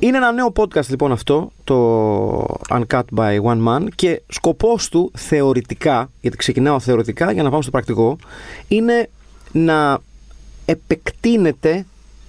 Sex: male